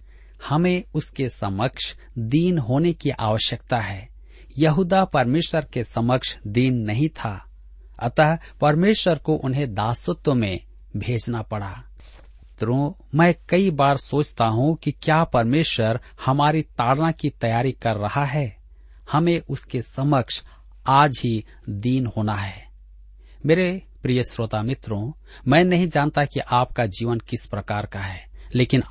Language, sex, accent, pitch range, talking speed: Hindi, male, native, 110-150 Hz, 130 wpm